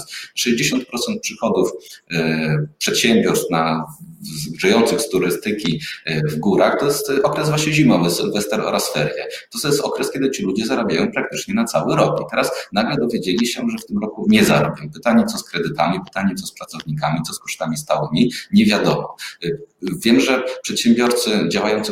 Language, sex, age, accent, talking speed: Polish, male, 30-49, native, 150 wpm